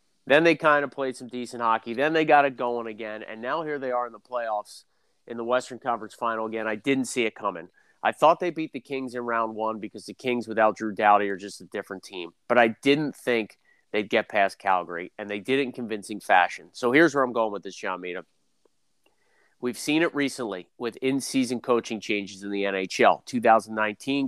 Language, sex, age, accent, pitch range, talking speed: English, male, 30-49, American, 110-135 Hz, 220 wpm